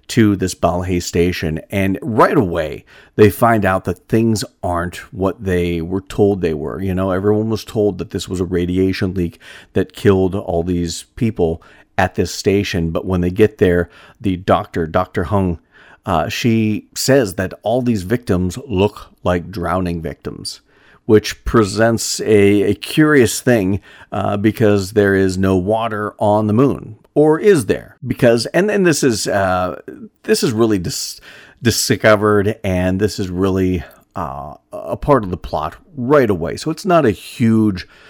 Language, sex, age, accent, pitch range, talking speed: English, male, 50-69, American, 90-110 Hz, 165 wpm